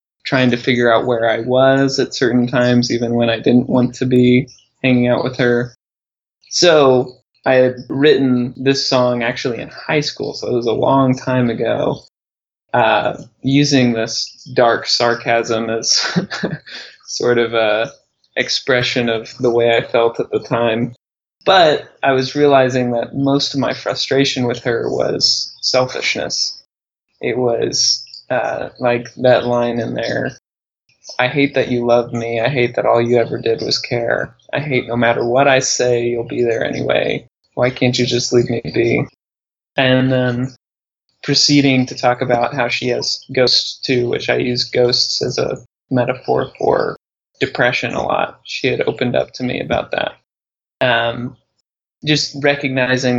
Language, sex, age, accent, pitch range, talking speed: English, male, 20-39, American, 120-130 Hz, 160 wpm